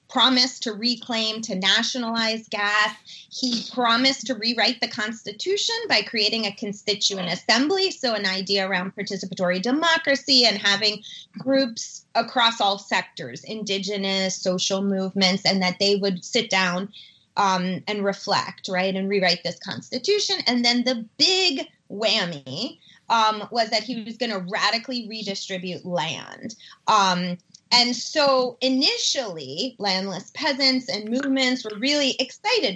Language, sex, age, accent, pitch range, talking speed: English, female, 30-49, American, 195-250 Hz, 130 wpm